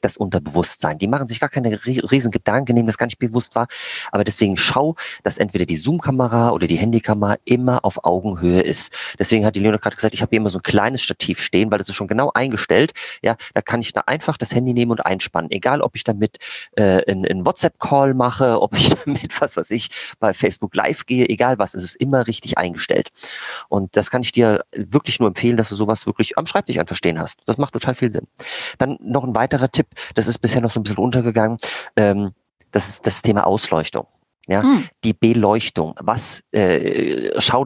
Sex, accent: male, German